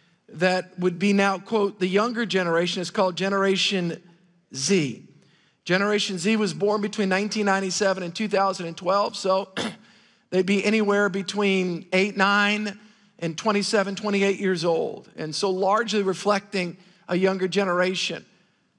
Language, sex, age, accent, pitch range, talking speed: English, male, 50-69, American, 185-215 Hz, 125 wpm